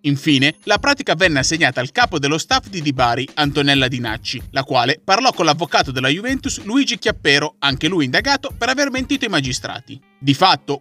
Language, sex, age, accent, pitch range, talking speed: Italian, male, 30-49, native, 135-225 Hz, 185 wpm